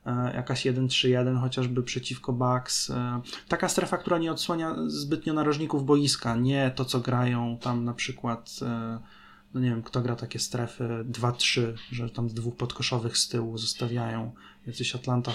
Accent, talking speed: native, 150 wpm